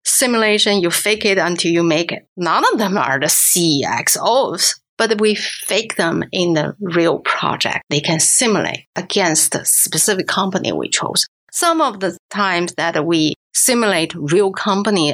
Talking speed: 160 wpm